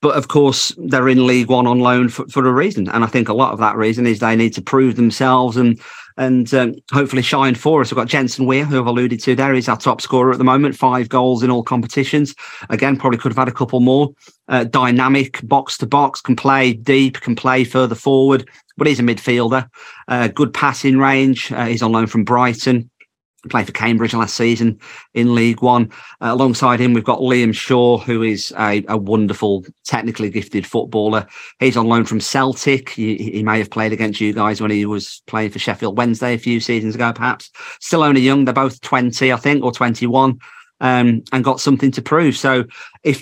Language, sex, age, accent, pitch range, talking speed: English, male, 40-59, British, 115-135 Hz, 210 wpm